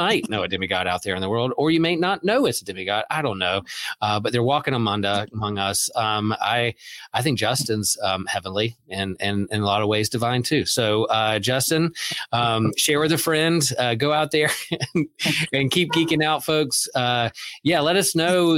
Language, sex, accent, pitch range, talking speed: English, male, American, 110-145 Hz, 220 wpm